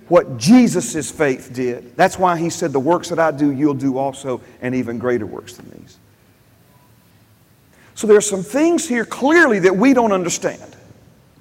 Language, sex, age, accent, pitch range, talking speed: English, male, 40-59, American, 190-260 Hz, 175 wpm